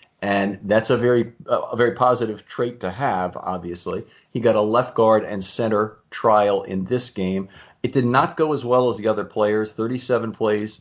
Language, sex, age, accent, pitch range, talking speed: English, male, 40-59, American, 90-120 Hz, 190 wpm